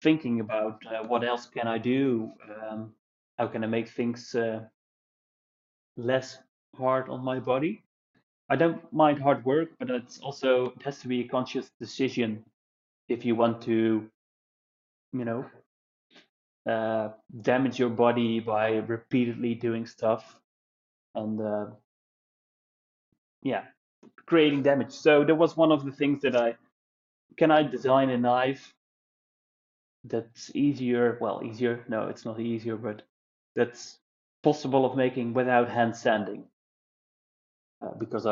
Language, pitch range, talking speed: English, 110-130 Hz, 135 wpm